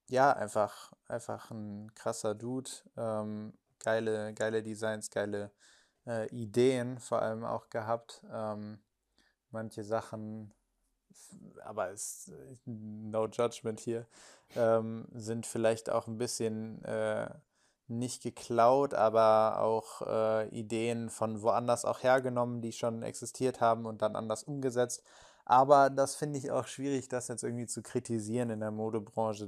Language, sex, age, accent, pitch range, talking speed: German, male, 20-39, German, 110-120 Hz, 130 wpm